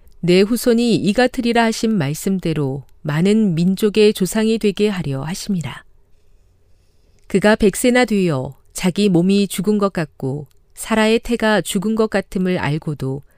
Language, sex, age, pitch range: Korean, female, 40-59, 140-210 Hz